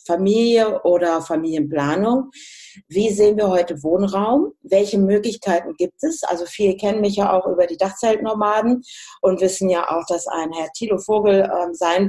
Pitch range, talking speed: 180-225 Hz, 155 wpm